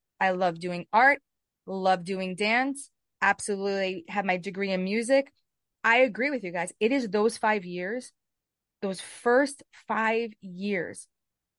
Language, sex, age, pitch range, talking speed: English, female, 20-39, 190-235 Hz, 140 wpm